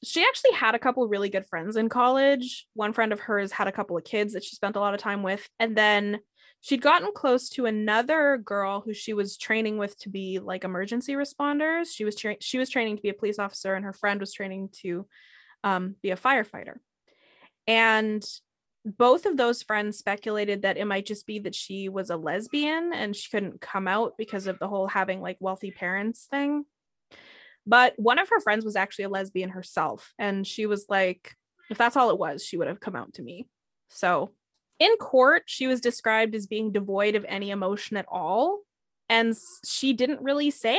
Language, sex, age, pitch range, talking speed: English, female, 20-39, 200-250 Hz, 205 wpm